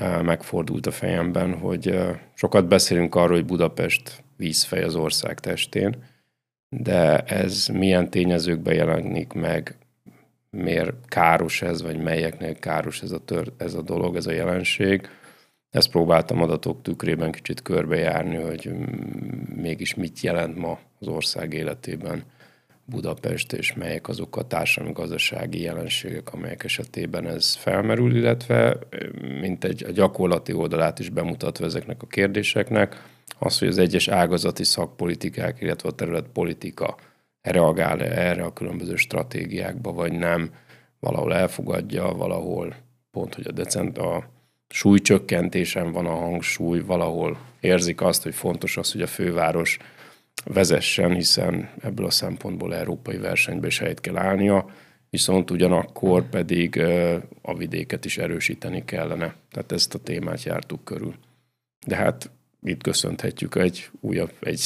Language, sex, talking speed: Hungarian, male, 125 wpm